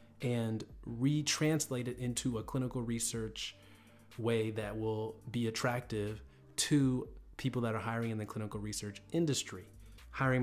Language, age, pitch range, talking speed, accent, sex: English, 30-49, 110-130 Hz, 130 wpm, American, male